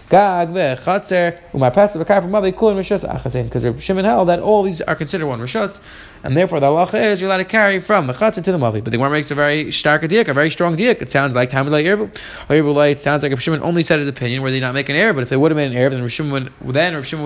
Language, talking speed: English, 280 wpm